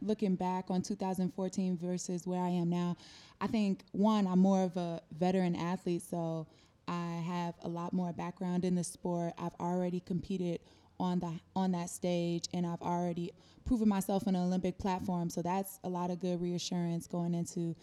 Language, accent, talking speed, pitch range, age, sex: English, American, 180 wpm, 165-180 Hz, 20-39, female